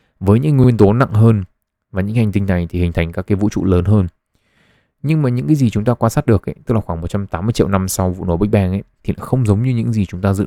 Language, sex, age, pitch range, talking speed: Vietnamese, male, 20-39, 90-110 Hz, 300 wpm